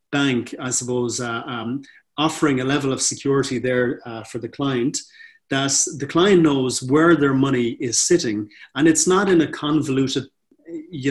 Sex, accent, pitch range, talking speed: male, Irish, 120-155 Hz, 165 wpm